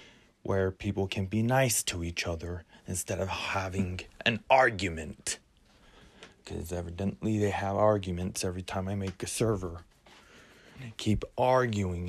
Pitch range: 95-120 Hz